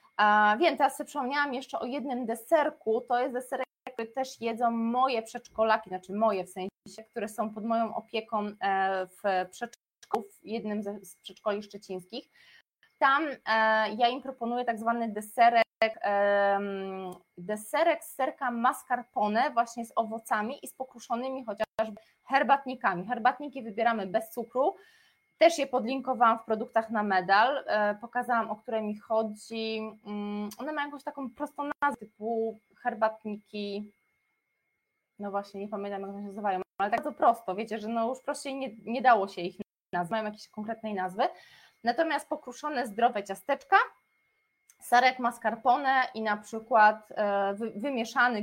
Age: 20-39